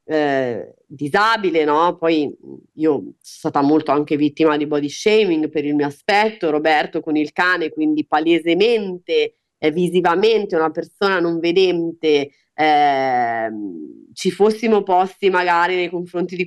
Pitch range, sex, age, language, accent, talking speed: 165-210 Hz, female, 30-49, Italian, native, 135 wpm